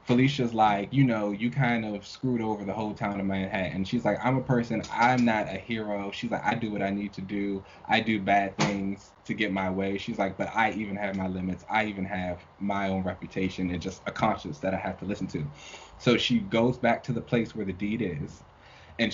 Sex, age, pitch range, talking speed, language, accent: male, 20-39, 95-115 Hz, 240 wpm, English, American